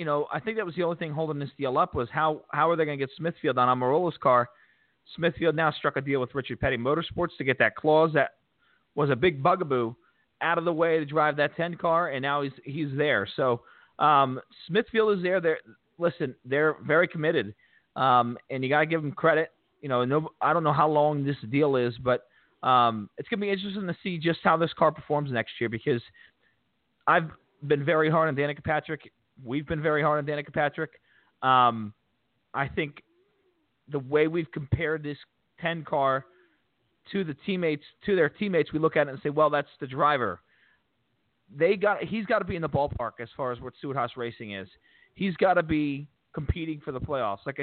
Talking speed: 210 wpm